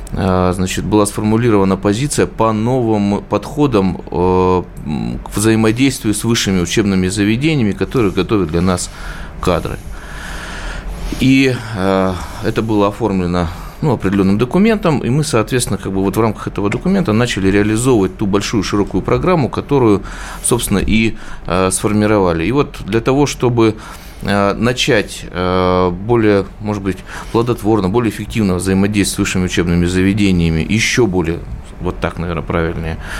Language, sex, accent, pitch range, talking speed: Russian, male, native, 90-110 Hz, 125 wpm